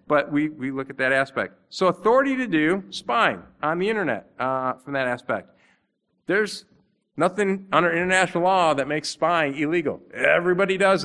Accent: American